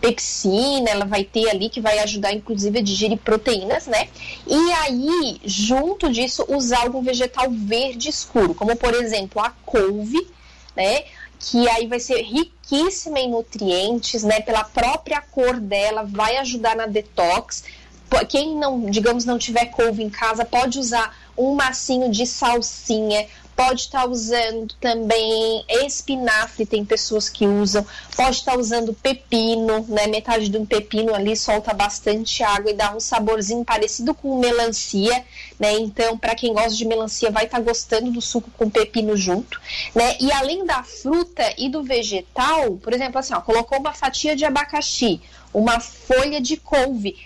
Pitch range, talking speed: 220-265 Hz, 160 wpm